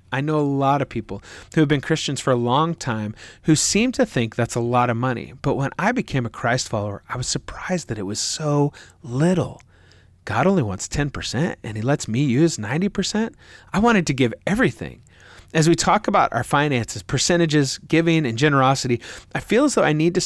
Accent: American